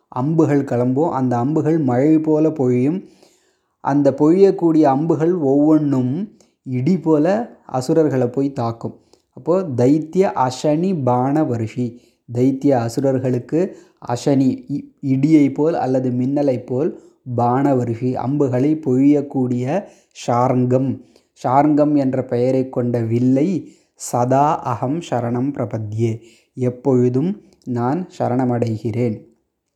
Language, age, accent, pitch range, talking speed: Tamil, 20-39, native, 125-145 Hz, 90 wpm